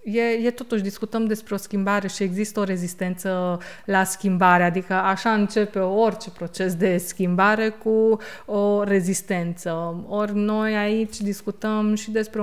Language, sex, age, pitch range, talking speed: Romanian, female, 20-39, 190-220 Hz, 140 wpm